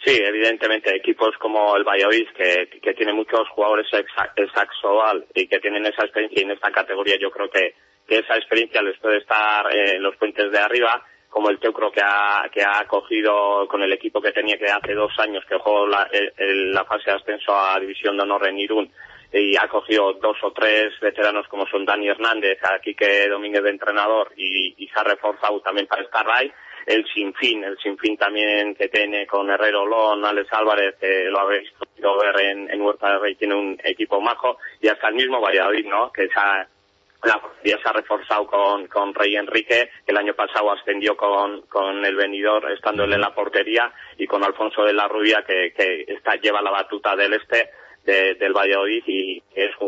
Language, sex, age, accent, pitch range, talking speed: Spanish, male, 30-49, Spanish, 100-110 Hz, 205 wpm